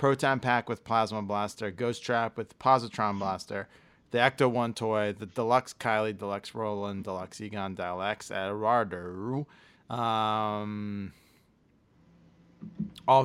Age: 30-49